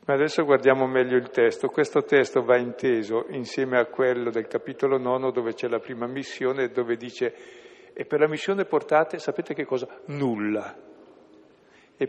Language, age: Italian, 60-79